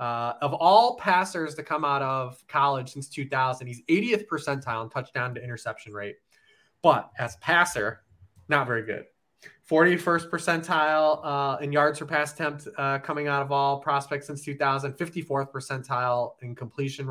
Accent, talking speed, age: American, 160 wpm, 20-39